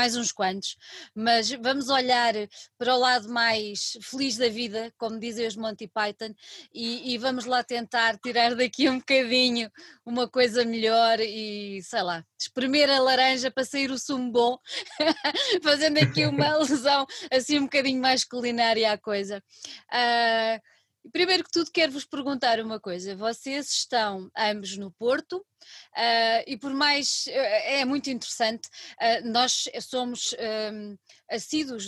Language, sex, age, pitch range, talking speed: Portuguese, female, 20-39, 225-280 Hz, 140 wpm